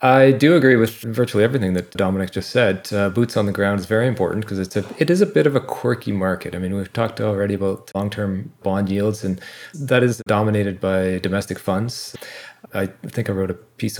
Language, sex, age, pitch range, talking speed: English, male, 30-49, 95-110 Hz, 225 wpm